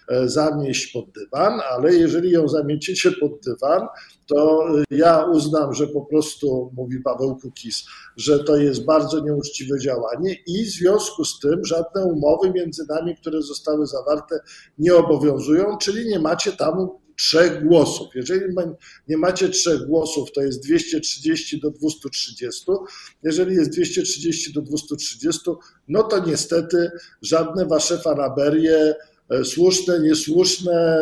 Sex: male